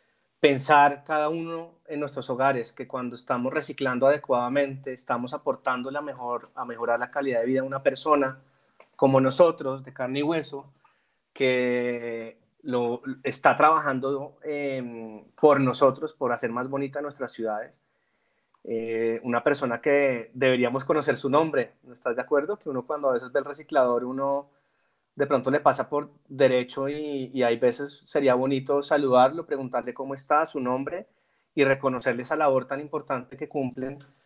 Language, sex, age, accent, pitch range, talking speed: Spanish, male, 30-49, Colombian, 125-145 Hz, 160 wpm